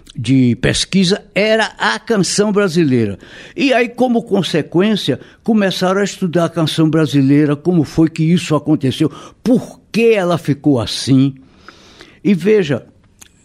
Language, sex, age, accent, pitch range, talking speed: Portuguese, male, 60-79, Brazilian, 145-190 Hz, 125 wpm